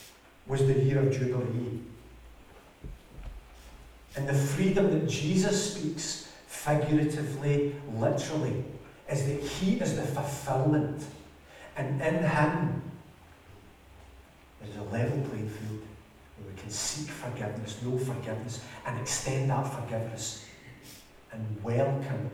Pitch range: 110-145 Hz